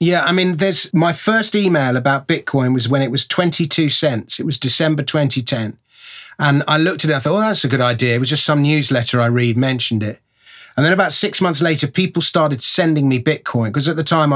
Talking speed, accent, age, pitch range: 230 wpm, British, 30-49, 135-180 Hz